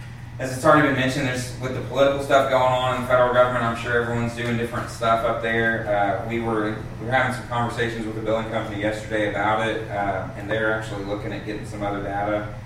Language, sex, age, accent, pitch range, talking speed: English, male, 30-49, American, 105-120 Hz, 230 wpm